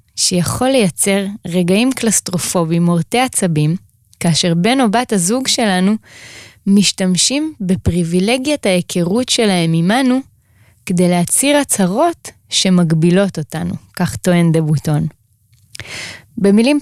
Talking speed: 95 wpm